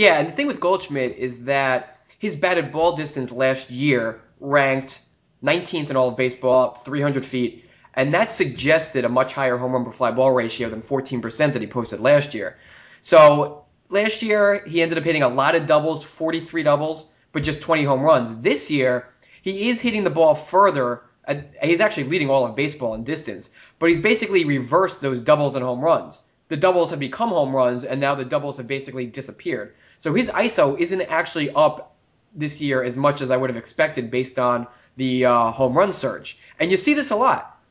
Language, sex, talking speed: English, male, 200 wpm